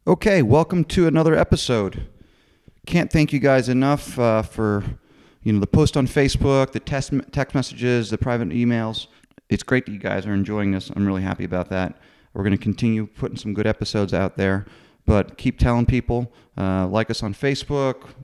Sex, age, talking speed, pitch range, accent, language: male, 30-49, 190 wpm, 105-130 Hz, American, English